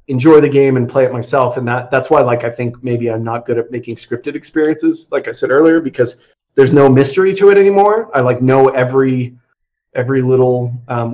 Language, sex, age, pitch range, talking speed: English, male, 30-49, 120-155 Hz, 215 wpm